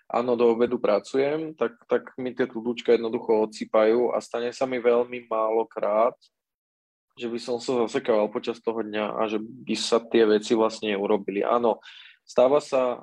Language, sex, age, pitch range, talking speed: Slovak, male, 20-39, 110-125 Hz, 170 wpm